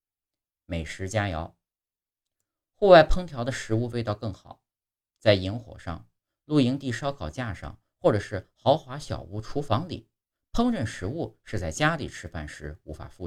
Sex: male